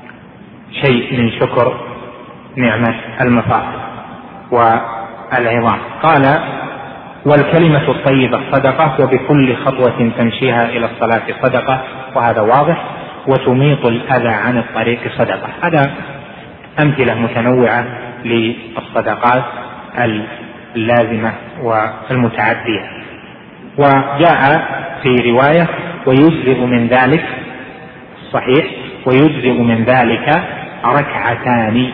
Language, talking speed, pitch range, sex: Arabic, 75 wpm, 120-135 Hz, male